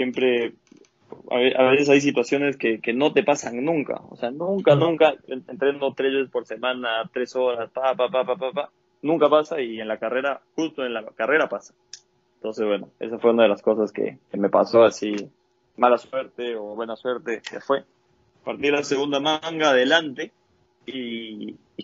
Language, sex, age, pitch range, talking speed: Spanish, male, 20-39, 115-130 Hz, 180 wpm